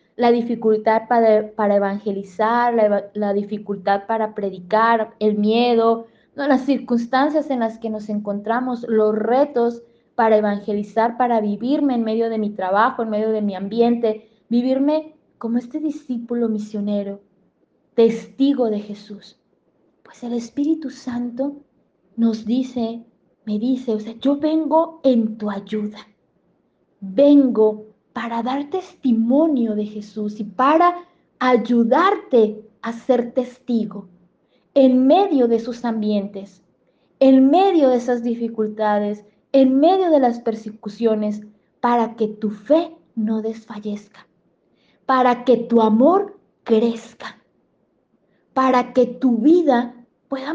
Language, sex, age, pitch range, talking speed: Spanish, female, 20-39, 215-260 Hz, 120 wpm